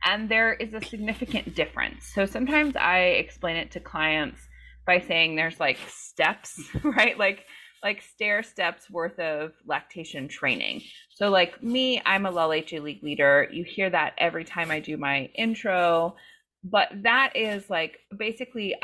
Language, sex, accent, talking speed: English, female, American, 155 wpm